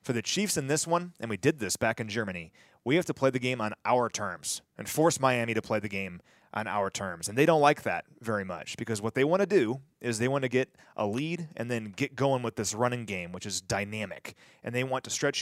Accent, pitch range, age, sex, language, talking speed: American, 110-145 Hz, 30-49, male, English, 265 wpm